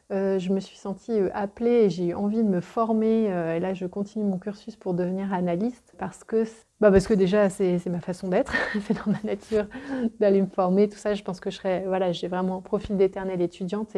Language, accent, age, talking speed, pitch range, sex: French, French, 30-49, 215 wpm, 185-225 Hz, female